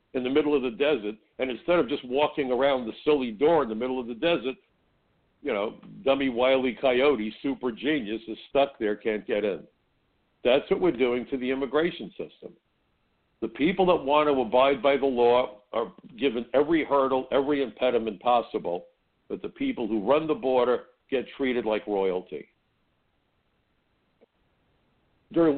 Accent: American